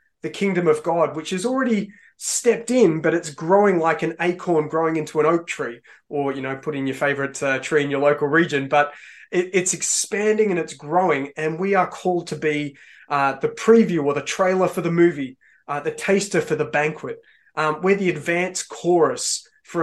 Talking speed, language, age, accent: 200 wpm, English, 20-39, Australian